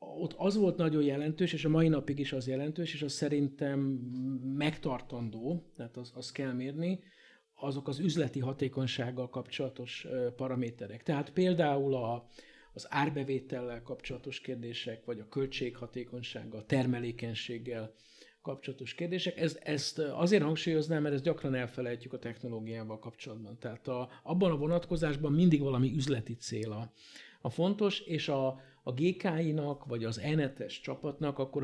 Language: Hungarian